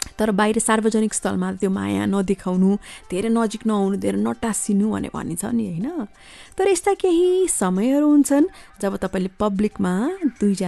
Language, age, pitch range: English, 30-49, 180-250 Hz